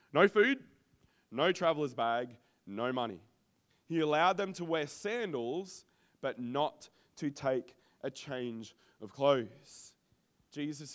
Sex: male